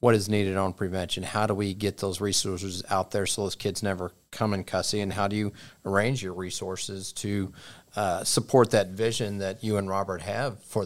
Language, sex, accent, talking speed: English, male, American, 210 wpm